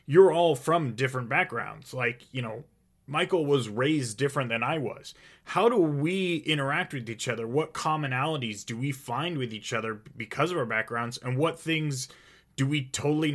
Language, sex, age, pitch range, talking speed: English, male, 30-49, 120-150 Hz, 180 wpm